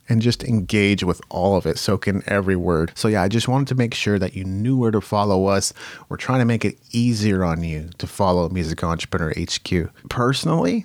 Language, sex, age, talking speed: English, male, 30-49, 220 wpm